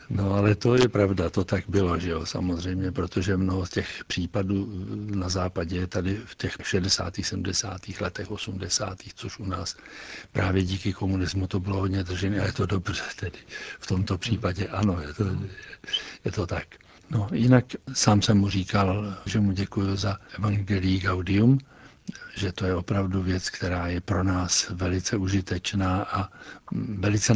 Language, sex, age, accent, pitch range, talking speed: Czech, male, 60-79, native, 90-105 Hz, 160 wpm